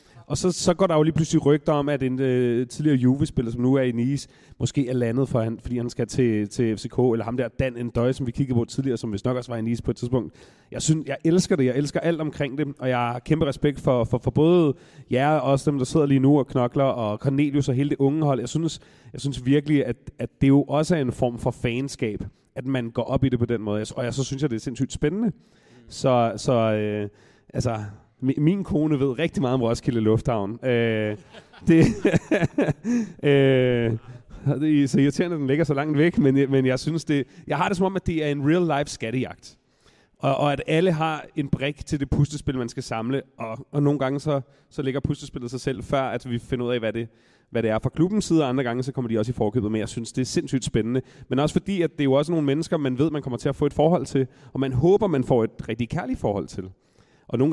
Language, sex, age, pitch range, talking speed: Danish, male, 30-49, 120-145 Hz, 255 wpm